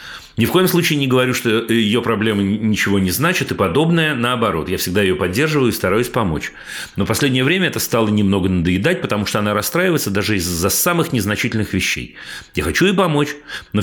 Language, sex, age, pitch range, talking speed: Russian, male, 40-59, 90-115 Hz, 190 wpm